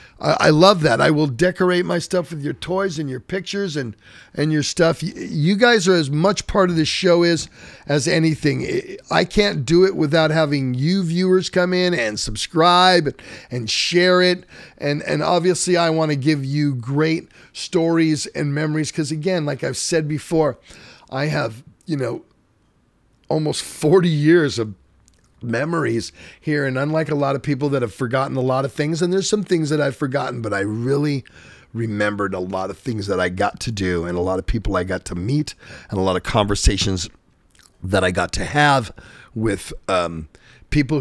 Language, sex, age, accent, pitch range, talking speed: English, male, 50-69, American, 115-165 Hz, 185 wpm